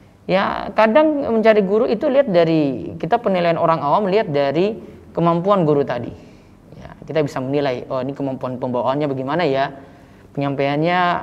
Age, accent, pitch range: 20-39, native, 140-180 Hz